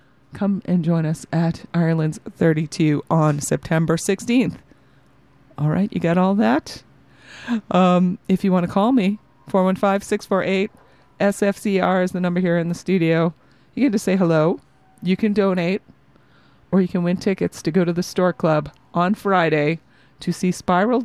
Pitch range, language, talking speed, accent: 165-200 Hz, English, 155 wpm, American